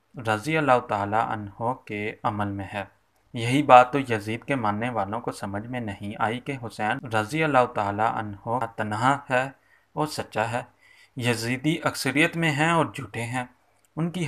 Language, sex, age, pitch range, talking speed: Urdu, male, 30-49, 110-135 Hz, 170 wpm